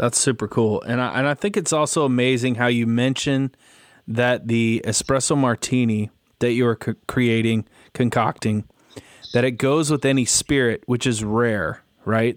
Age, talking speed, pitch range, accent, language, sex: 20-39, 165 wpm, 115-135 Hz, American, English, male